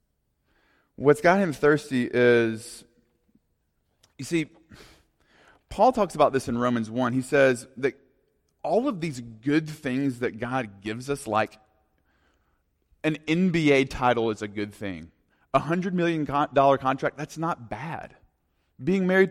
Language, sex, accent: English, male, American